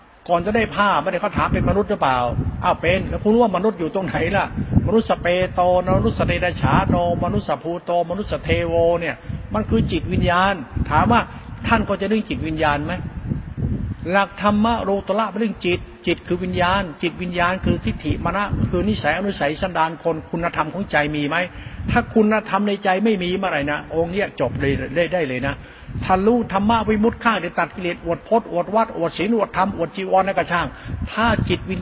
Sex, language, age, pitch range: male, Thai, 60-79, 150-195 Hz